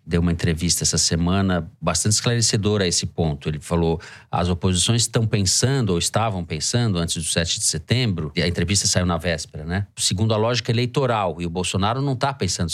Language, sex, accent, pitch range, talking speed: Portuguese, male, Brazilian, 90-115 Hz, 195 wpm